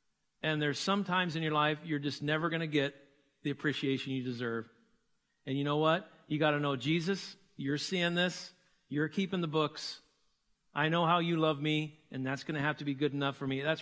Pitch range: 140-170 Hz